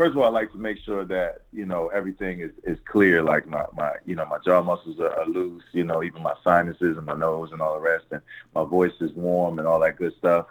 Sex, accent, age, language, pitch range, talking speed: male, American, 30-49, English, 80-90 Hz, 275 wpm